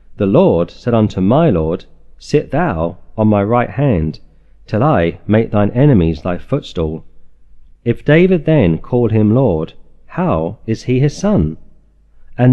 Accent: British